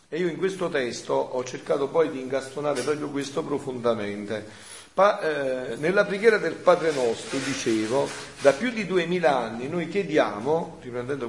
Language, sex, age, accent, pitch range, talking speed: Italian, male, 40-59, native, 125-165 Hz, 155 wpm